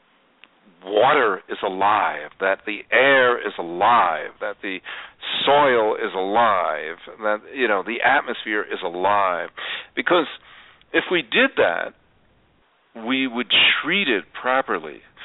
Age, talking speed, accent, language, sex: 50-69, 120 wpm, American, English, male